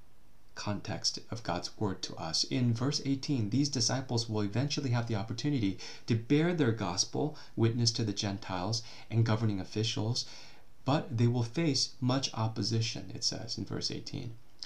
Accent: American